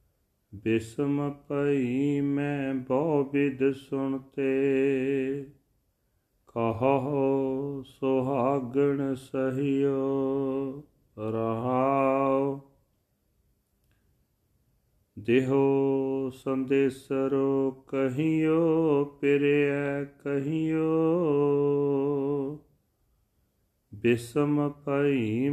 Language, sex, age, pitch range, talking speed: Punjabi, male, 40-59, 135-140 Hz, 40 wpm